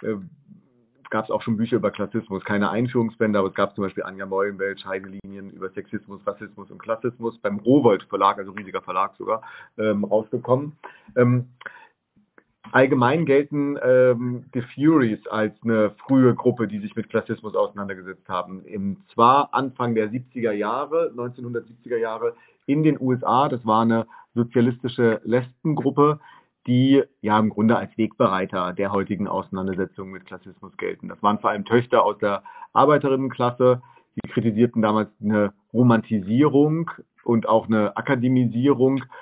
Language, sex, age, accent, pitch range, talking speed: German, male, 40-59, German, 105-130 Hz, 140 wpm